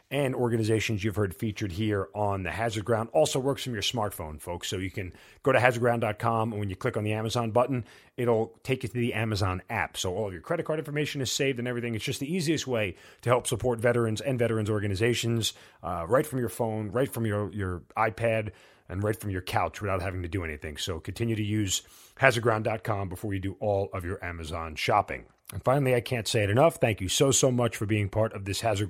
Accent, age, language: American, 30-49, English